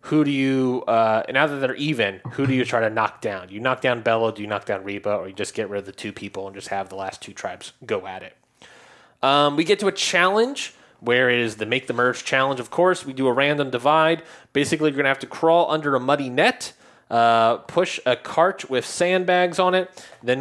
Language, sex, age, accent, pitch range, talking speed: English, male, 20-39, American, 125-170 Hz, 250 wpm